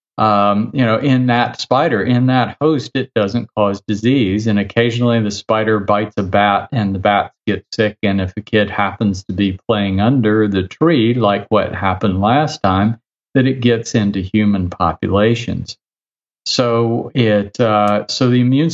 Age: 50-69